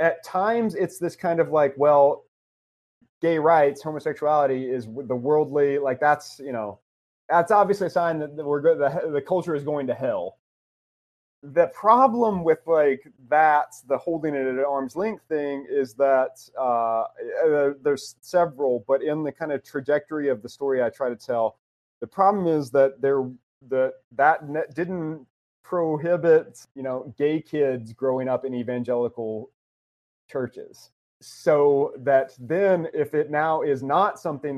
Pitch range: 125-160 Hz